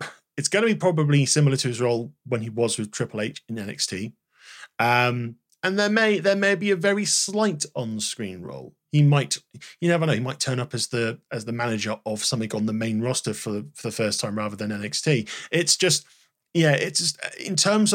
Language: English